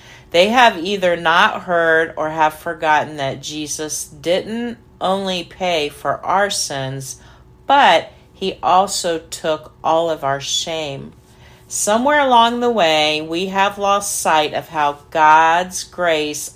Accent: American